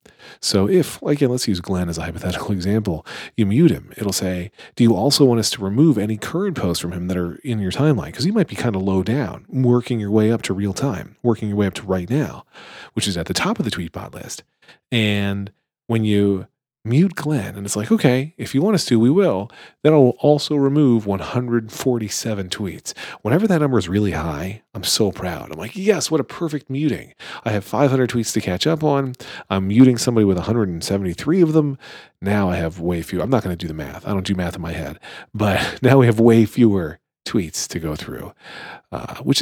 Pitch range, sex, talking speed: 95-135 Hz, male, 225 wpm